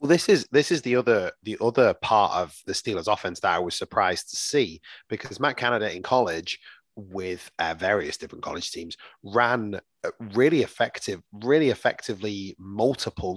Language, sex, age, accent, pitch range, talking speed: English, male, 30-49, British, 95-125 Hz, 170 wpm